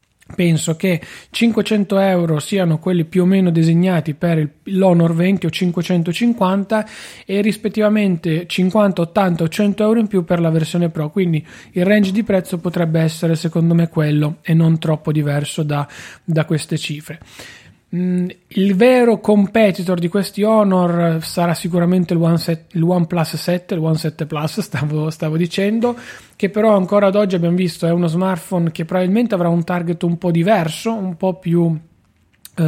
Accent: native